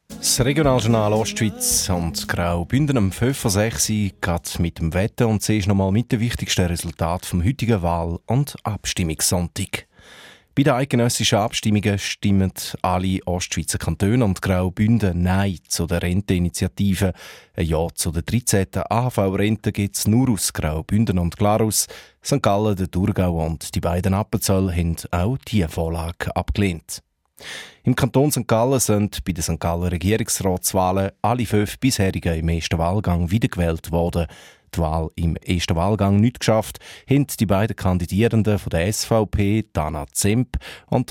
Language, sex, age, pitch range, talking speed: German, male, 30-49, 85-110 Hz, 145 wpm